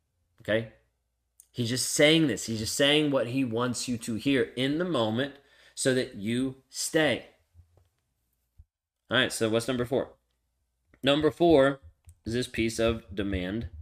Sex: male